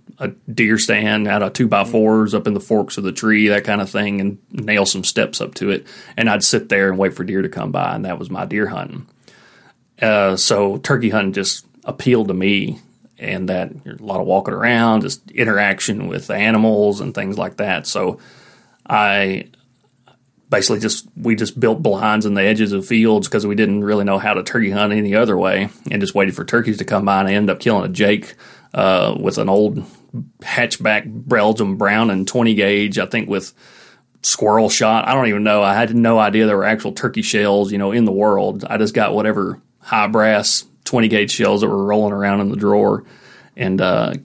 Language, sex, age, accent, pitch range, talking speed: English, male, 30-49, American, 100-110 Hz, 210 wpm